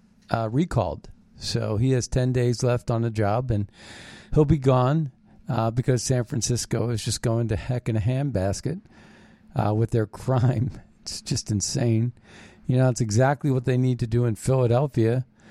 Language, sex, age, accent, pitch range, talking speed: English, male, 50-69, American, 110-140 Hz, 175 wpm